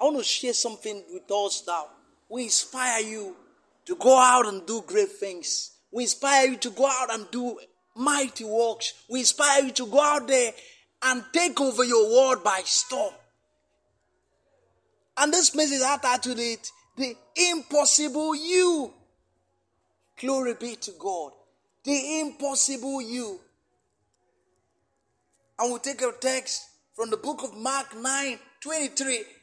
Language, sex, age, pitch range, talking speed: English, male, 30-49, 230-295 Hz, 145 wpm